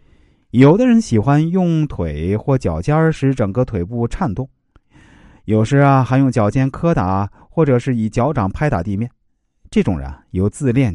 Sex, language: male, Chinese